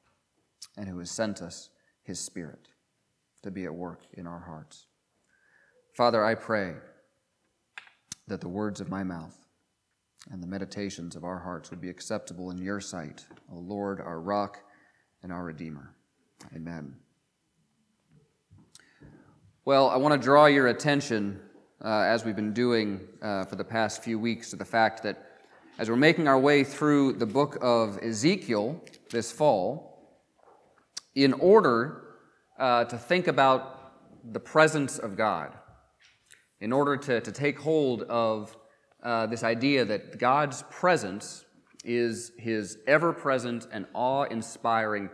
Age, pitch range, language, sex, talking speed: 40-59, 100-135 Hz, English, male, 140 wpm